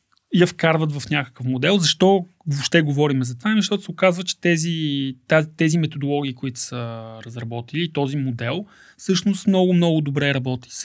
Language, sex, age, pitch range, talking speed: Bulgarian, male, 30-49, 140-175 Hz, 155 wpm